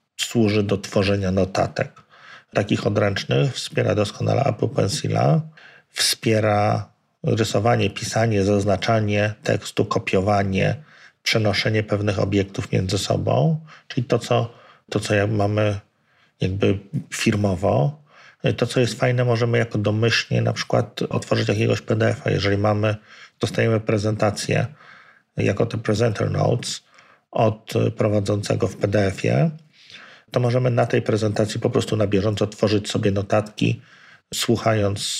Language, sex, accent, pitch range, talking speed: Polish, male, native, 105-120 Hz, 110 wpm